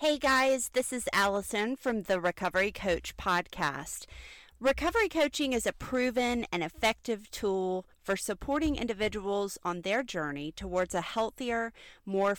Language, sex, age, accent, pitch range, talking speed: English, female, 40-59, American, 180-245 Hz, 135 wpm